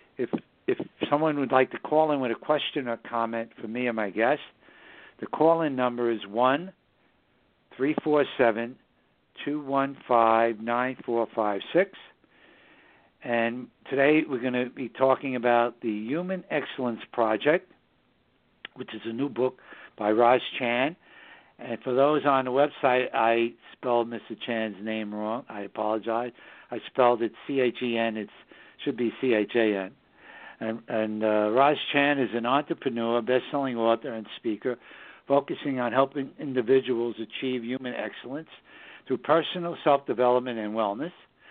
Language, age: English, 60-79